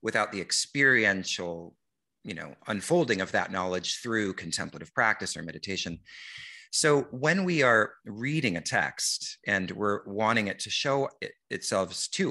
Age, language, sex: 30-49, English, male